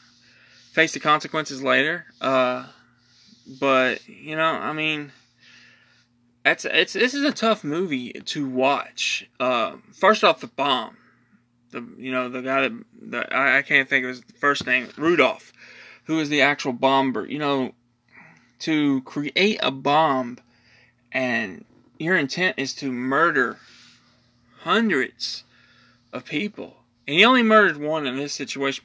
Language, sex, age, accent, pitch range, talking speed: English, male, 20-39, American, 125-170 Hz, 140 wpm